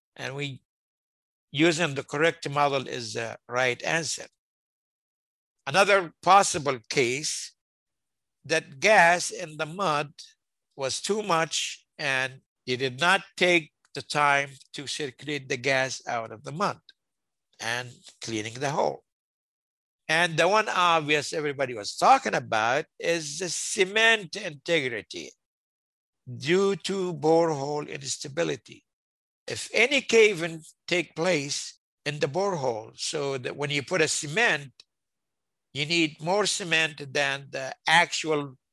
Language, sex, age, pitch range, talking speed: English, male, 60-79, 135-175 Hz, 120 wpm